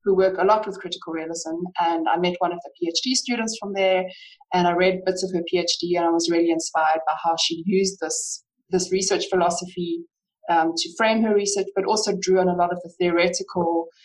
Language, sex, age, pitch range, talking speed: English, female, 20-39, 170-195 Hz, 220 wpm